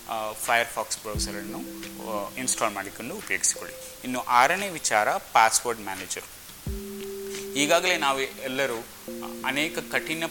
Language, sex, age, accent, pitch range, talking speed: Kannada, male, 30-49, native, 105-135 Hz, 95 wpm